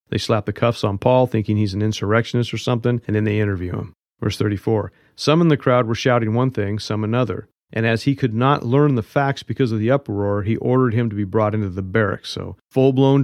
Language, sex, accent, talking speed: English, male, American, 235 wpm